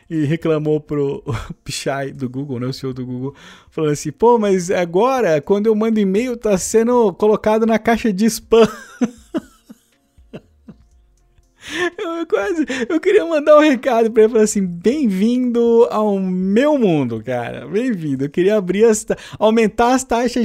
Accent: Brazilian